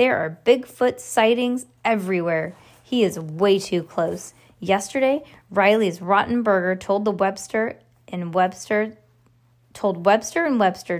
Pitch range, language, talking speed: 175-220 Hz, English, 120 wpm